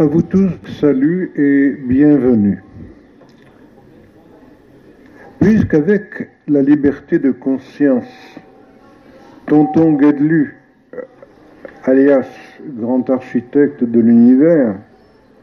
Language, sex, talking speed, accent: French, male, 70 wpm, French